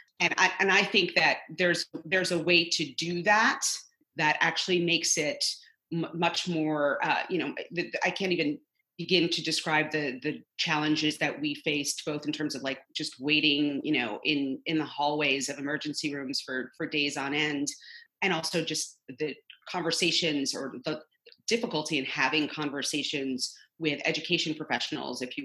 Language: English